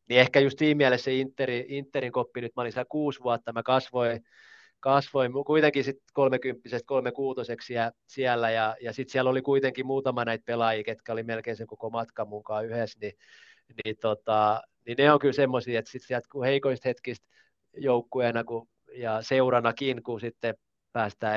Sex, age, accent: male, 20-39, native